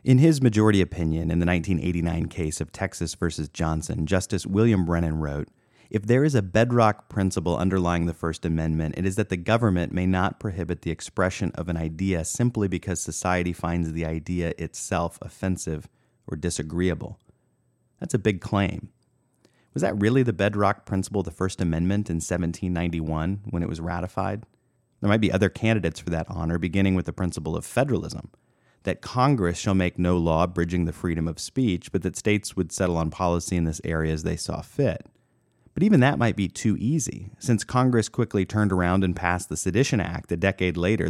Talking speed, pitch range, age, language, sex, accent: 185 wpm, 85-105 Hz, 30-49, English, male, American